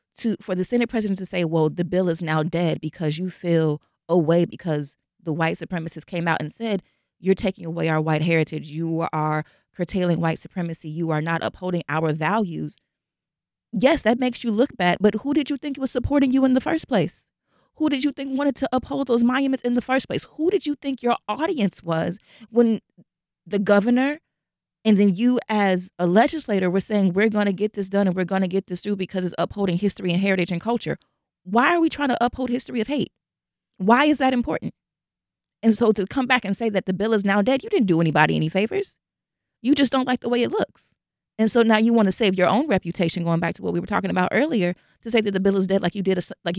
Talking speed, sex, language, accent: 235 wpm, female, English, American